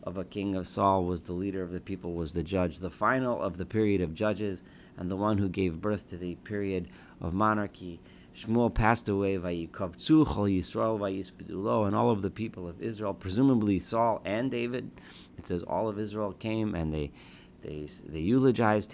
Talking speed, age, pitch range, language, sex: 180 wpm, 40-59, 85-110 Hz, English, male